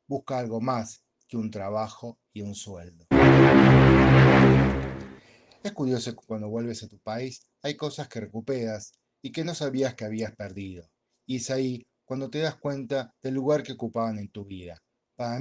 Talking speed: 170 wpm